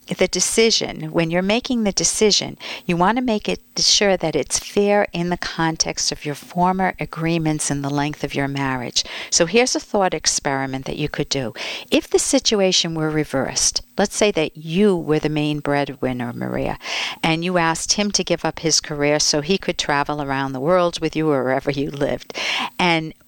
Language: English